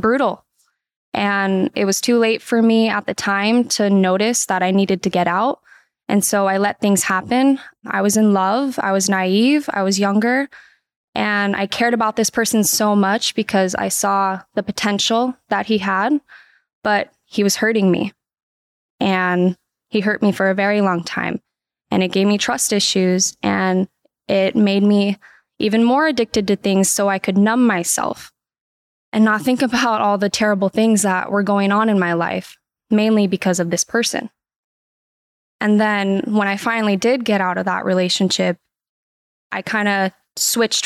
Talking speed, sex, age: 175 wpm, female, 10-29